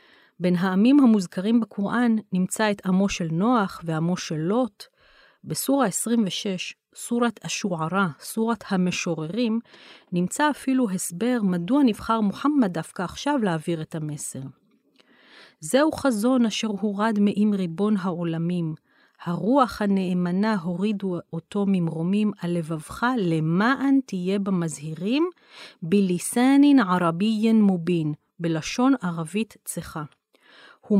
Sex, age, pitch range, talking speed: female, 40-59, 175-230 Hz, 100 wpm